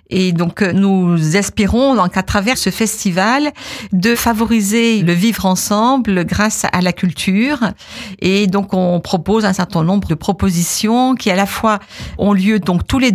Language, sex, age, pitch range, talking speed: French, female, 50-69, 180-220 Hz, 165 wpm